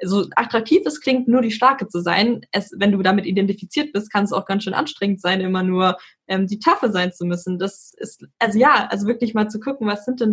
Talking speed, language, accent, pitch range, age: 250 wpm, German, German, 195-240 Hz, 10-29